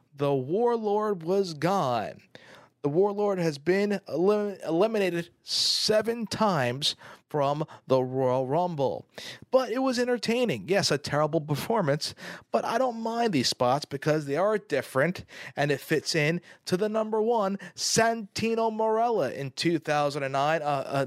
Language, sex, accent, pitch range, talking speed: English, male, American, 140-195 Hz, 135 wpm